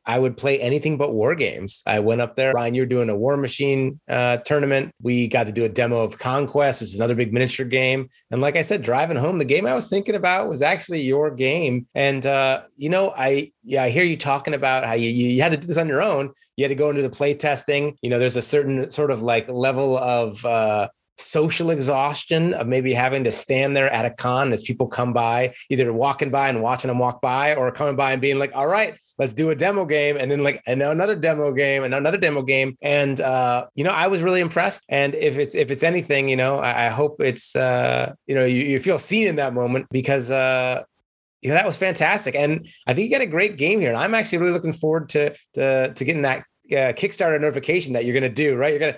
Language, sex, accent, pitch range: English, male, American, 125-150 Hz